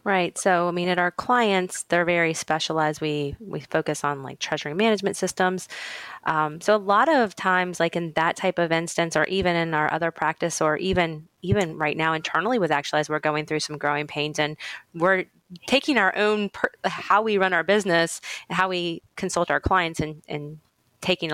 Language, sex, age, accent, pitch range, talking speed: English, female, 20-39, American, 155-185 Hz, 195 wpm